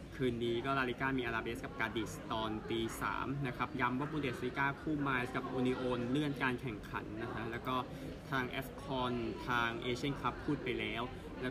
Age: 20-39